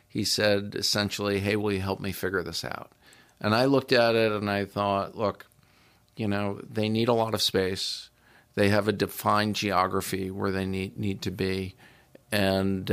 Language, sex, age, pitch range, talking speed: English, male, 50-69, 95-105 Hz, 185 wpm